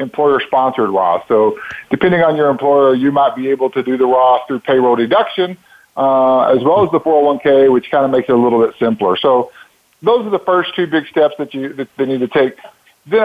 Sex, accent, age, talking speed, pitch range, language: male, American, 50-69, 220 wpm, 120-150 Hz, English